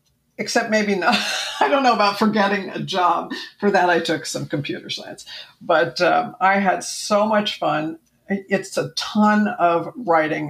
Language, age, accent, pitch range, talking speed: English, 50-69, American, 155-205 Hz, 165 wpm